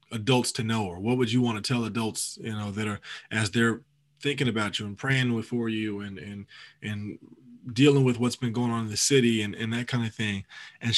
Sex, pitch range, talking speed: male, 110-130 Hz, 235 wpm